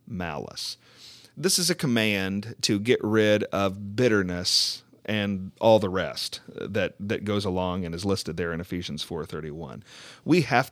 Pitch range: 100-115 Hz